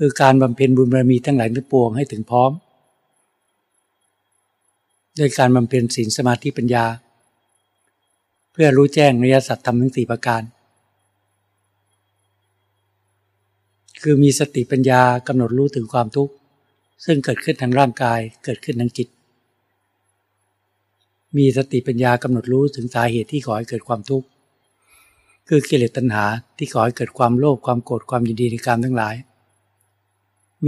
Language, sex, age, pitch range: Thai, male, 60-79, 105-135 Hz